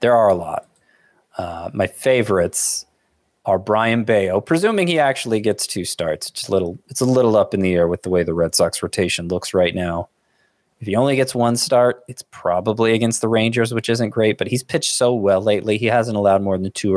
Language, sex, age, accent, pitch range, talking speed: English, male, 20-39, American, 100-130 Hz, 225 wpm